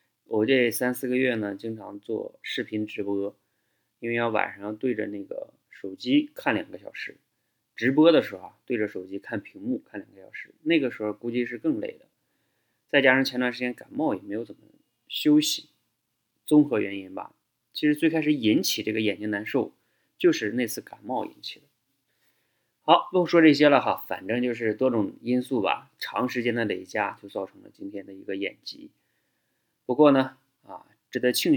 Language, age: Chinese, 20-39